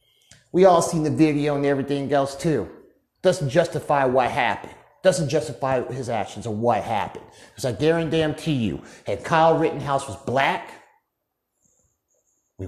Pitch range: 115-165 Hz